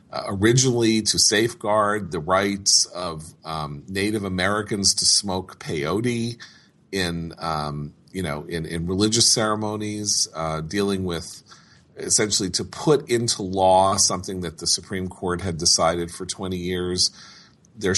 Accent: American